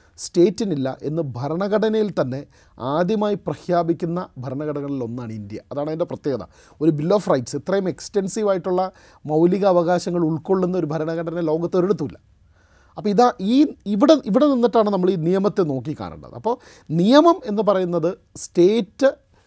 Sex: male